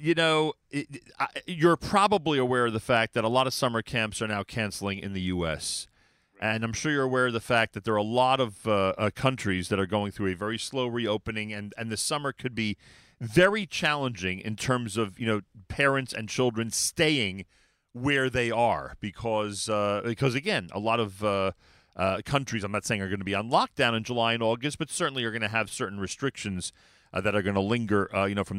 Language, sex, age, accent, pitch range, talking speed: English, male, 40-59, American, 100-135 Hz, 225 wpm